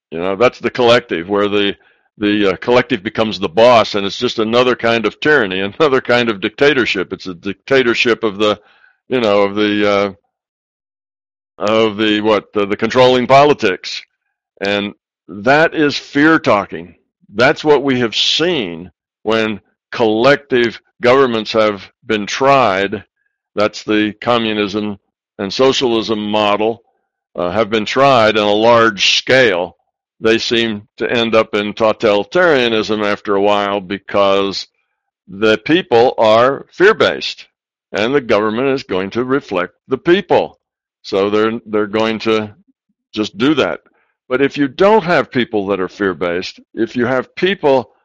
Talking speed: 145 wpm